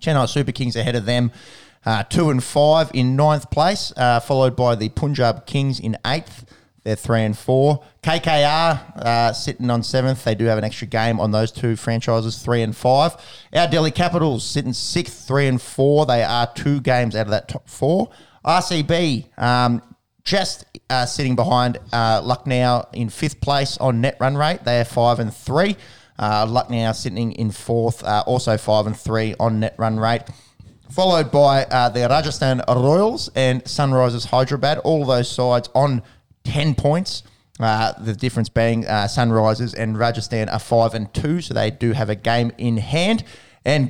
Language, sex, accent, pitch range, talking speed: English, male, Australian, 115-140 Hz, 180 wpm